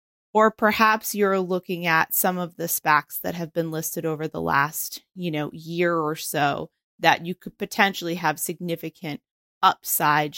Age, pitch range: 30-49, 155-180 Hz